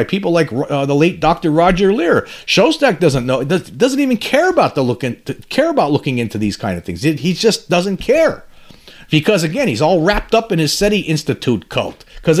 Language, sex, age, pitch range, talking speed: English, male, 40-59, 135-195 Hz, 210 wpm